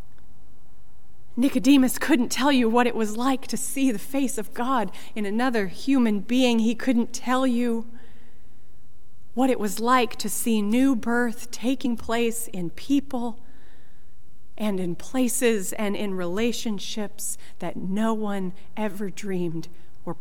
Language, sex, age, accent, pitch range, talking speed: English, female, 40-59, American, 215-265 Hz, 135 wpm